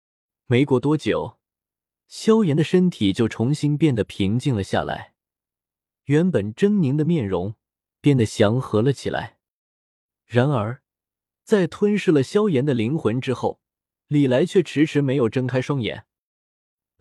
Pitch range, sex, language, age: 110-160 Hz, male, Chinese, 20-39